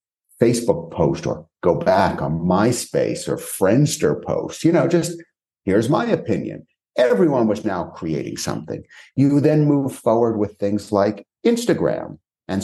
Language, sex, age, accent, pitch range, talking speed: English, male, 50-69, American, 95-150 Hz, 145 wpm